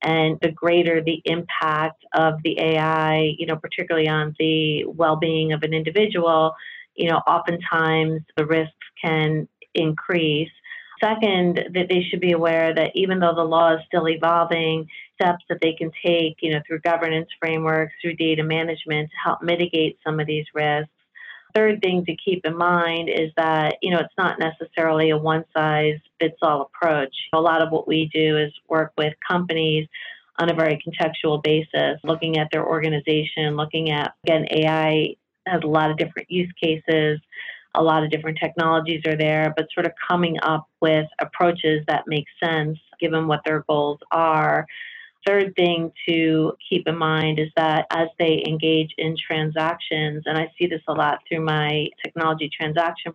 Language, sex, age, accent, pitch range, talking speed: English, female, 40-59, American, 155-165 Hz, 170 wpm